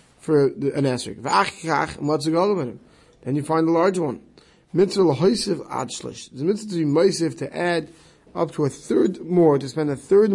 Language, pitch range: English, 135-180 Hz